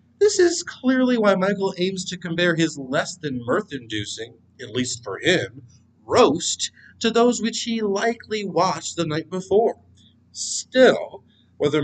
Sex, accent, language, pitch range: male, American, English, 140-230 Hz